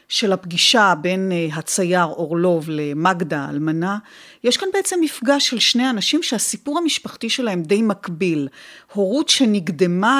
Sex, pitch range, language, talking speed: female, 190-265 Hz, Hebrew, 125 wpm